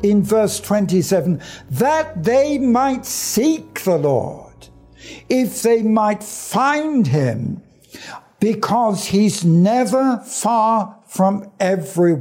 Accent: British